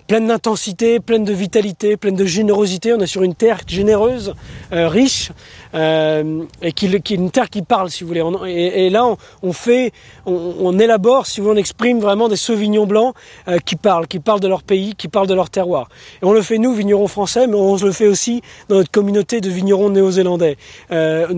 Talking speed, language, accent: 220 wpm, French, French